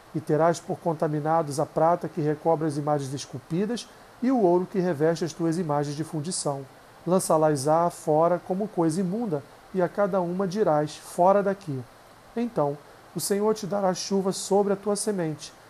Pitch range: 155-190 Hz